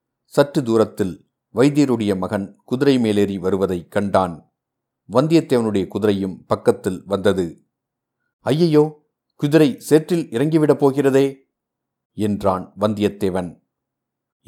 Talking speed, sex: 80 wpm, male